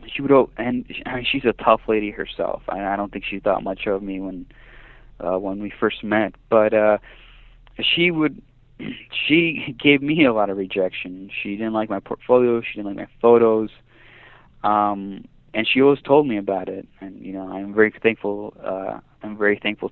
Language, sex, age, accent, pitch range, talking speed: English, male, 20-39, American, 100-120 Hz, 185 wpm